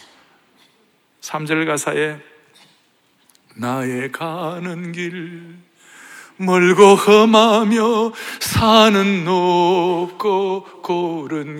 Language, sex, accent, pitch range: Korean, male, native, 180-275 Hz